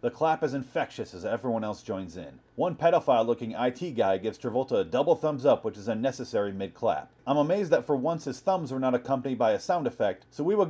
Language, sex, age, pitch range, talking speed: English, male, 40-59, 115-165 Hz, 230 wpm